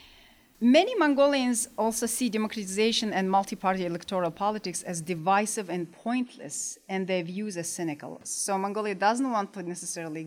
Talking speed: 140 wpm